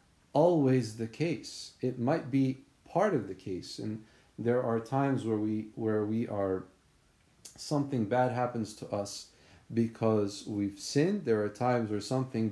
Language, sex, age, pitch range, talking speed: English, male, 40-59, 110-135 Hz, 155 wpm